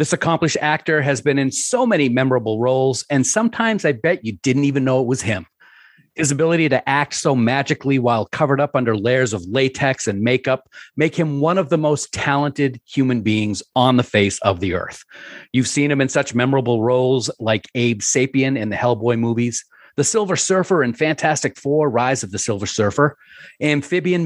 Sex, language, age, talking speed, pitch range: male, English, 40-59, 190 wpm, 120-155 Hz